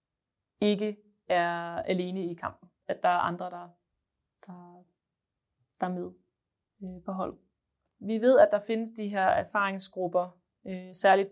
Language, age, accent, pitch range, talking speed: Danish, 20-39, native, 175-195 Hz, 135 wpm